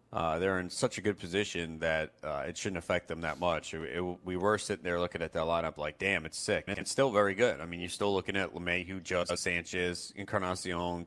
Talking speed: 240 wpm